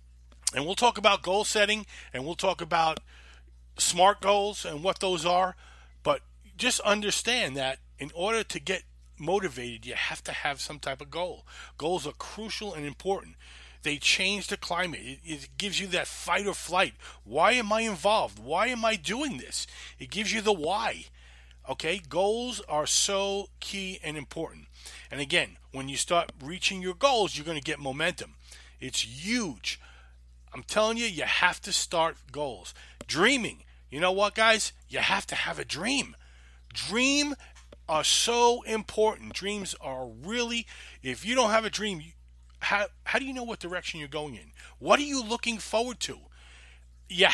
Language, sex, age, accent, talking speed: English, male, 40-59, American, 170 wpm